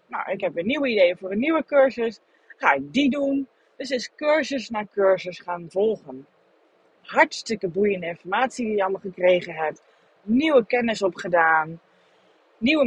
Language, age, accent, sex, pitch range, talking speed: Dutch, 30-49, Dutch, female, 195-280 Hz, 155 wpm